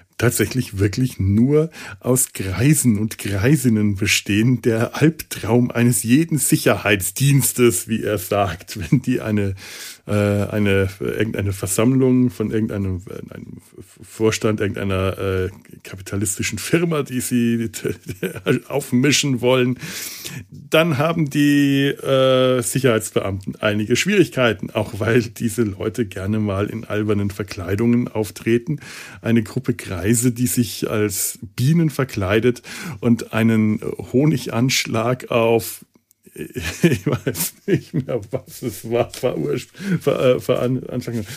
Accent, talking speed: German, 110 wpm